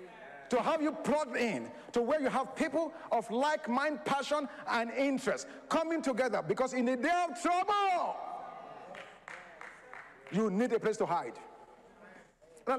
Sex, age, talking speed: male, 50-69, 145 wpm